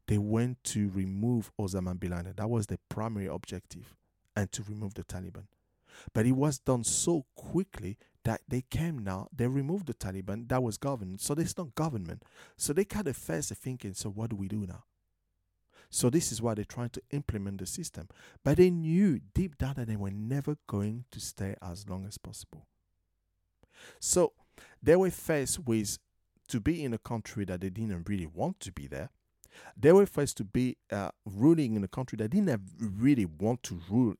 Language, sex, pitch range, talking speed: English, male, 95-130 Hz, 195 wpm